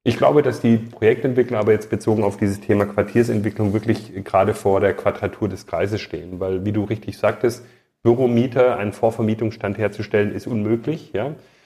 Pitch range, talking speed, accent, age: 105-125 Hz, 160 wpm, German, 40-59